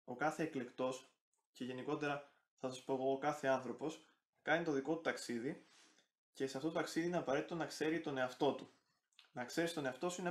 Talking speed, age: 205 wpm, 20-39